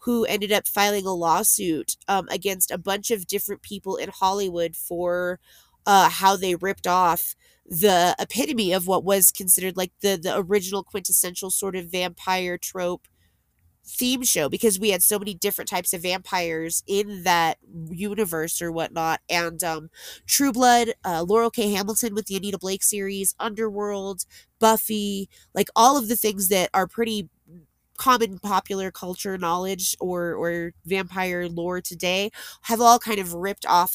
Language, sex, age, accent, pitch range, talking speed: English, female, 30-49, American, 175-205 Hz, 160 wpm